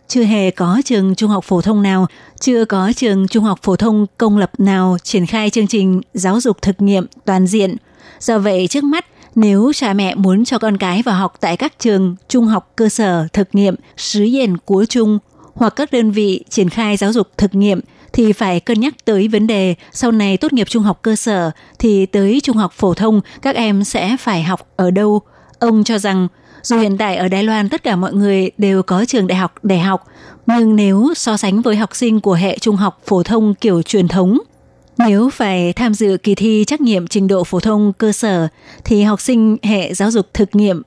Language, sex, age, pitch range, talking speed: Vietnamese, female, 20-39, 190-225 Hz, 220 wpm